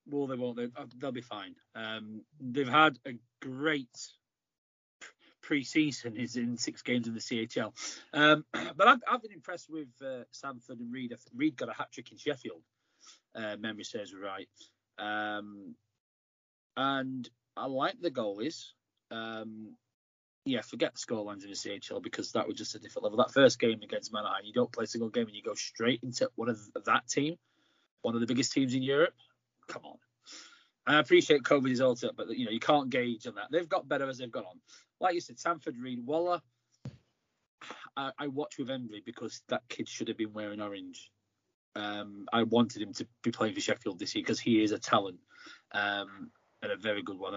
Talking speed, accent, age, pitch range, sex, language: 200 wpm, British, 30-49, 110-140 Hz, male, English